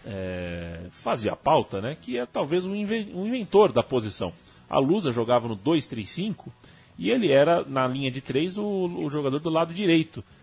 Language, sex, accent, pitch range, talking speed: Portuguese, male, Brazilian, 115-165 Hz, 185 wpm